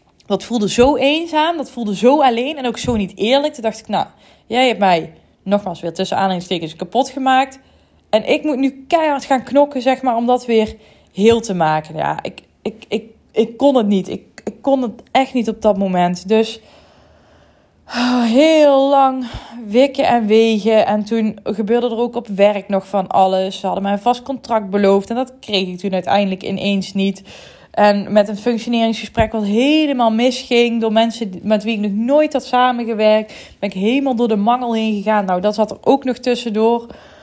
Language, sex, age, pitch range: Dutch, female, 20-39, 210-250 Hz